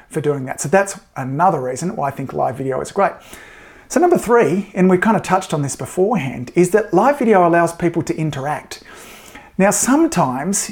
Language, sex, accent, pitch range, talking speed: English, male, Australian, 145-185 Hz, 195 wpm